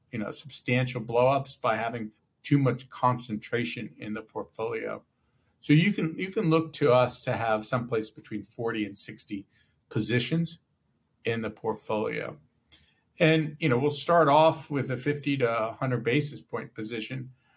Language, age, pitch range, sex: English, 50-69, 125-160 Hz, male